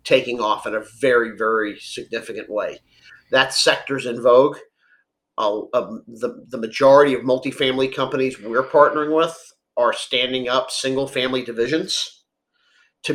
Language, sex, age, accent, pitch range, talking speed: English, male, 40-59, American, 125-145 Hz, 130 wpm